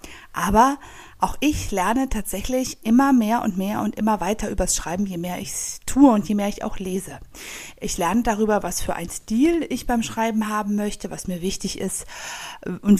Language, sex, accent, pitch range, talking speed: German, female, German, 180-220 Hz, 195 wpm